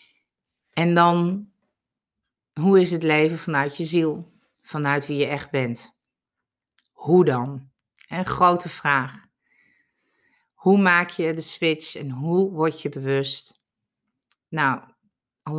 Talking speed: 120 wpm